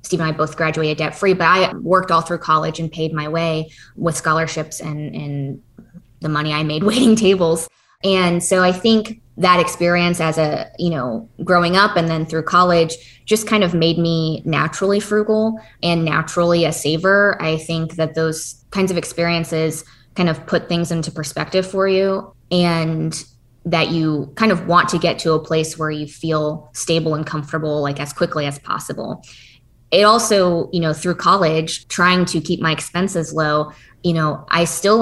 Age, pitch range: 20-39, 155-180 Hz